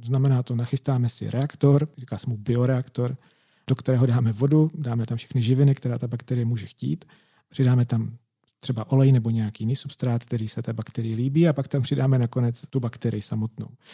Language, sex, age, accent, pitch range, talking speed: Czech, male, 40-59, native, 120-140 Hz, 185 wpm